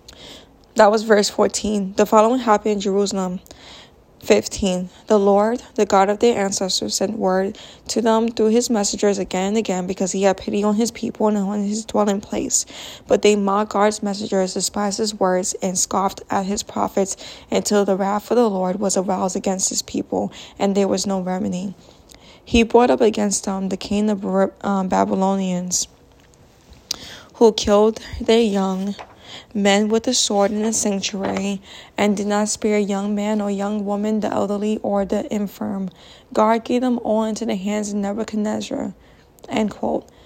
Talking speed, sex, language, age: 170 wpm, female, English, 10-29